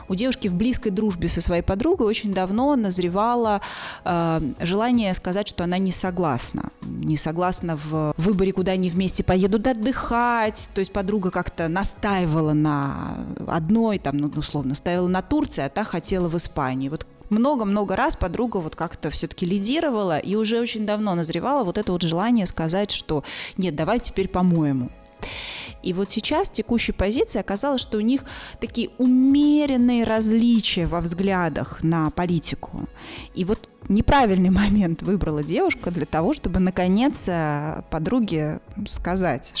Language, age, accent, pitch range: Russian, 20-39, native, 160-215 Hz